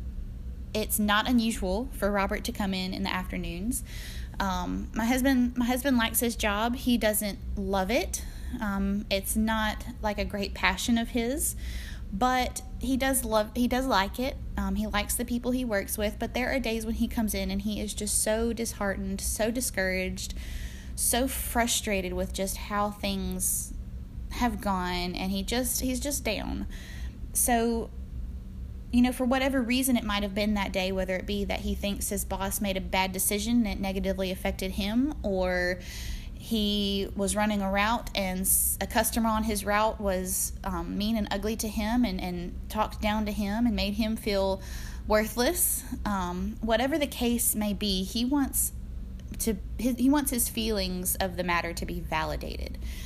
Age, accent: 20-39, American